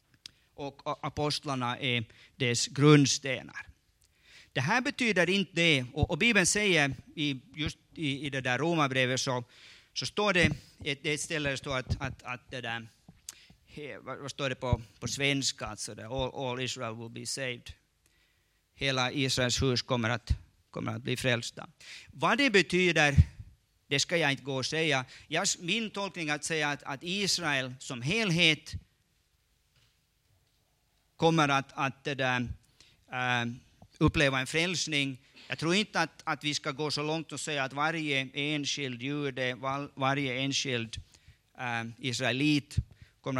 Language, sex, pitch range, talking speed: Swedish, male, 125-155 Hz, 145 wpm